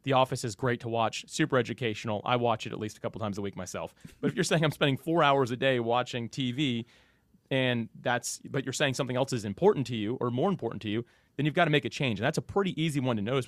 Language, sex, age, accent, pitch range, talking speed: English, male, 30-49, American, 115-140 Hz, 275 wpm